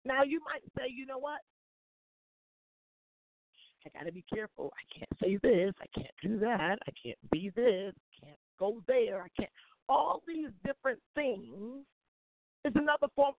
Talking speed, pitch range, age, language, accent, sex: 160 wpm, 205-275 Hz, 50-69, English, American, female